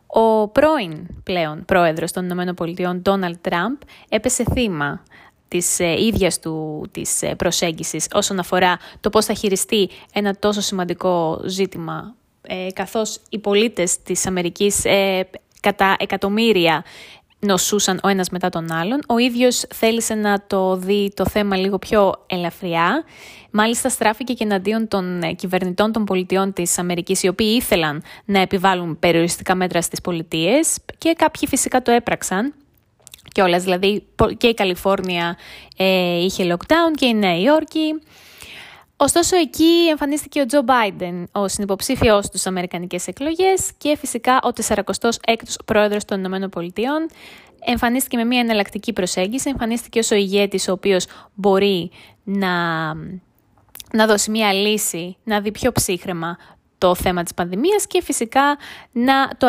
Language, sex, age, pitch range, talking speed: Greek, female, 20-39, 180-235 Hz, 135 wpm